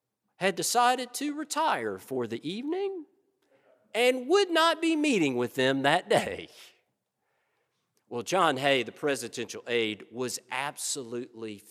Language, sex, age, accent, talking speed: English, male, 50-69, American, 125 wpm